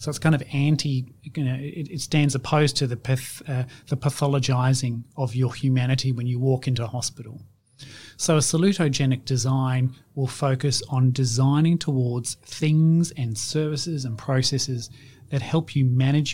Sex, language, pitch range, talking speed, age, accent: male, English, 125-150 Hz, 160 wpm, 30-49, Australian